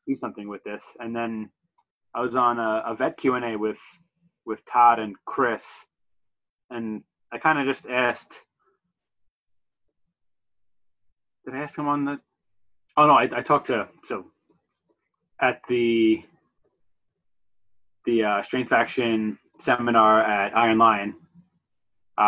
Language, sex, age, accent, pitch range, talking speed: English, male, 20-39, American, 100-125 Hz, 130 wpm